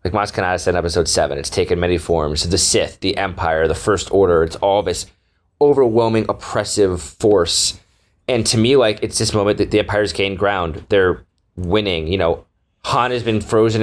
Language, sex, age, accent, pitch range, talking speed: English, male, 20-39, American, 95-125 Hz, 185 wpm